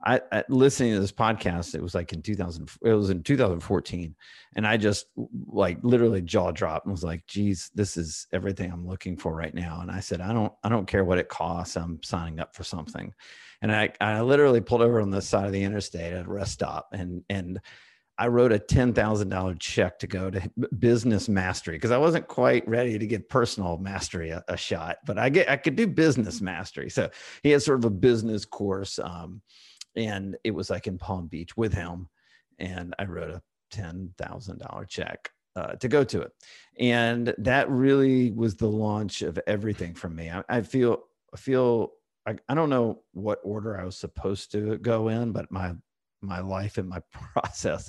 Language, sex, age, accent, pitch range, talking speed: English, male, 40-59, American, 90-115 Hz, 200 wpm